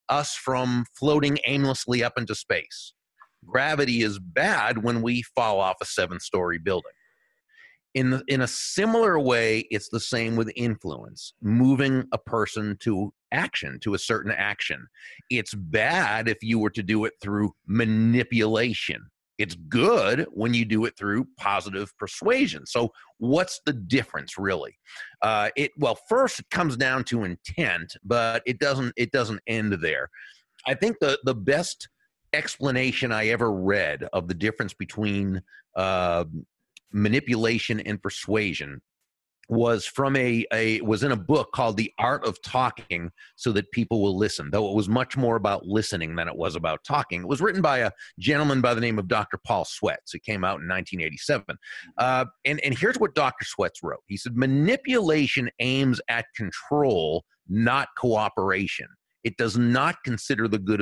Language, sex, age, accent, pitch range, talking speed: English, male, 40-59, American, 105-130 Hz, 160 wpm